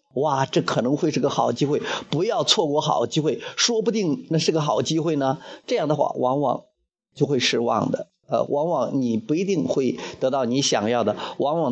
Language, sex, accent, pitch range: Chinese, male, native, 135-205 Hz